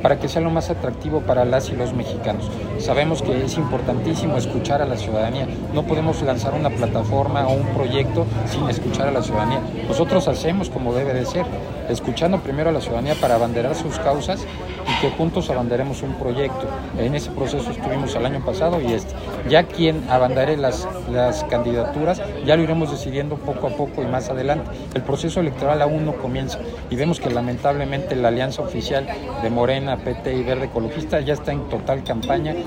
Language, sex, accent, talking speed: Spanish, male, Mexican, 185 wpm